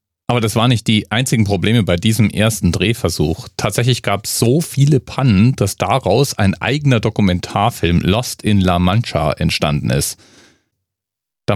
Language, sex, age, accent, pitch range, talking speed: German, male, 40-59, German, 90-115 Hz, 150 wpm